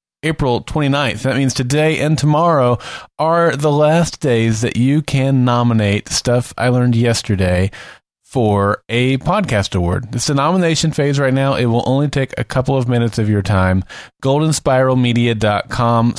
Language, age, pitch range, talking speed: English, 30-49, 105-135 Hz, 150 wpm